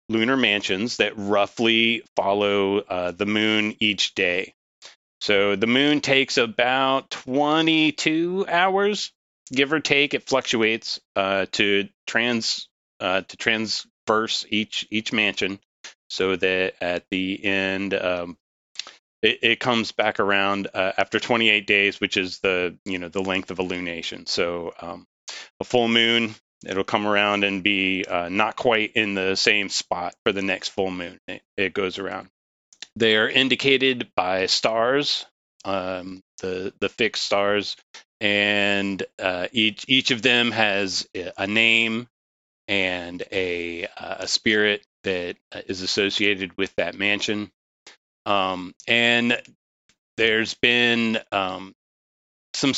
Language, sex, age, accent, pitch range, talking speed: English, male, 30-49, American, 95-115 Hz, 135 wpm